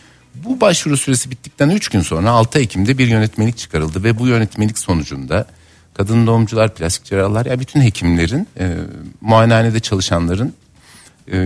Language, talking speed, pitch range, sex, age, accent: Turkish, 145 wpm, 85-120 Hz, male, 50-69, native